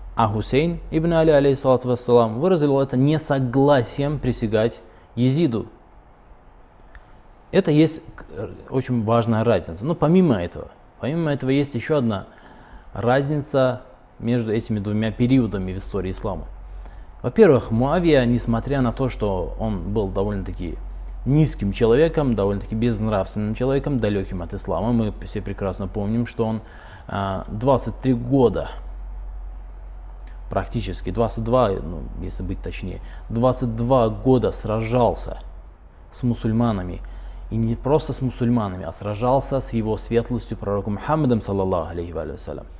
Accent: native